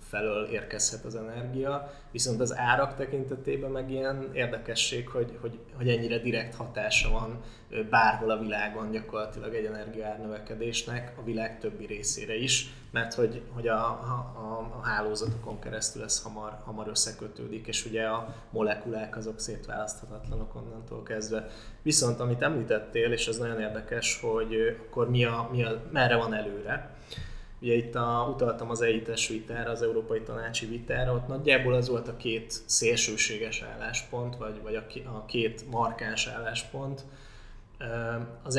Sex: male